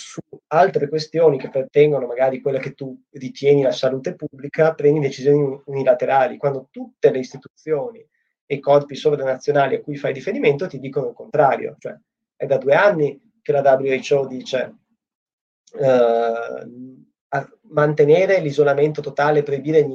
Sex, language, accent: male, Italian, native